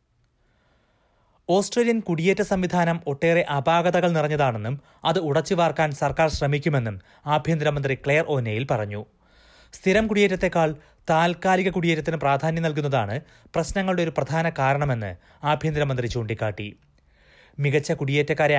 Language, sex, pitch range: Malayalam, male, 125-170 Hz